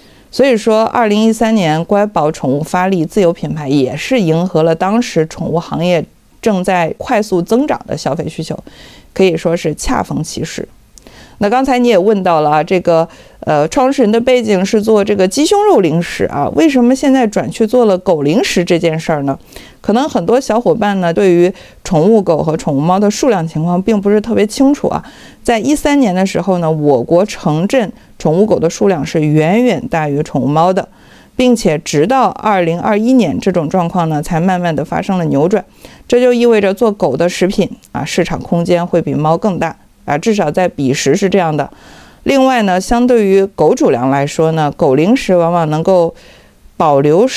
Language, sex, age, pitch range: Chinese, female, 50-69, 165-230 Hz